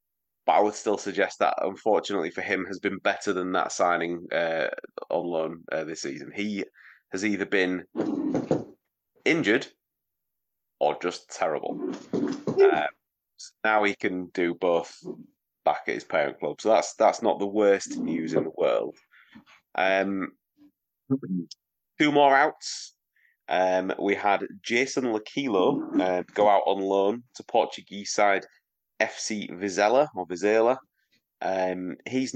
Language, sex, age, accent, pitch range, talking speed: English, male, 30-49, British, 90-115 Hz, 130 wpm